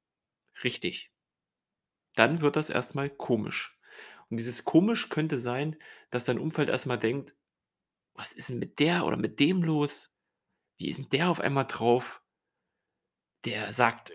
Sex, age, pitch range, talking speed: male, 30-49, 120-165 Hz, 145 wpm